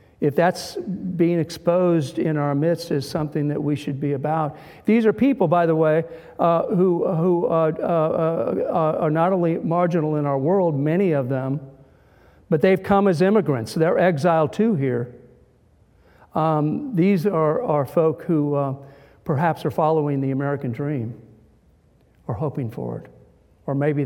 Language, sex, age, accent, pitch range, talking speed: English, male, 50-69, American, 135-165 Hz, 160 wpm